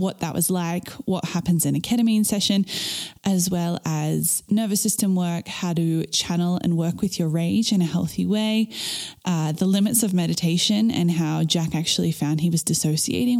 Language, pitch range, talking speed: English, 170-205 Hz, 185 wpm